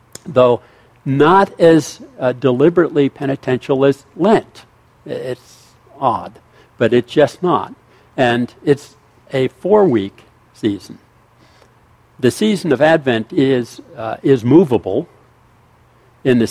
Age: 60-79